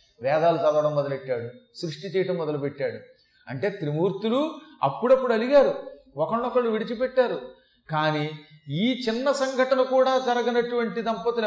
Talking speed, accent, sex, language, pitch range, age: 100 wpm, native, male, Telugu, 150-245 Hz, 30-49